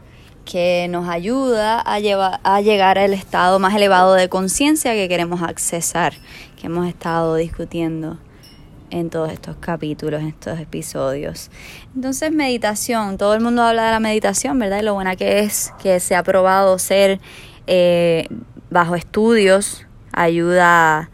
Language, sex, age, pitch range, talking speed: Spanish, female, 20-39, 165-210 Hz, 145 wpm